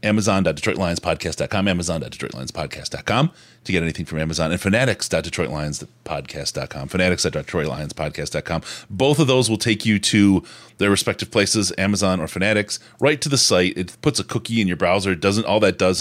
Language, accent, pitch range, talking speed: English, American, 90-115 Hz, 145 wpm